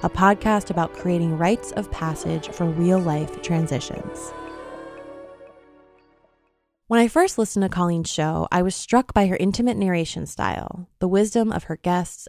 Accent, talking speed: American, 145 wpm